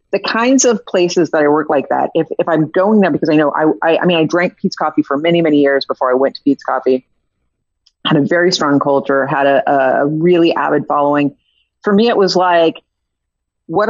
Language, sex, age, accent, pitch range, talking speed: English, female, 40-59, American, 150-185 Hz, 225 wpm